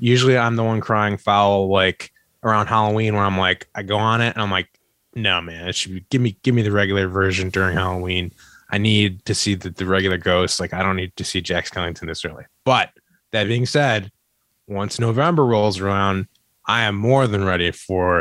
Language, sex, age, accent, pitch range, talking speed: English, male, 20-39, American, 95-115 Hz, 215 wpm